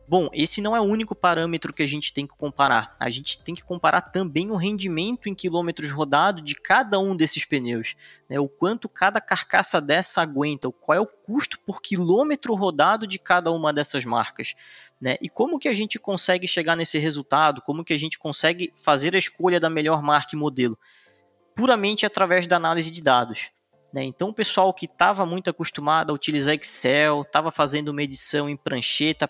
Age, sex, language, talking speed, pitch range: 20-39, male, Portuguese, 190 wpm, 150-185 Hz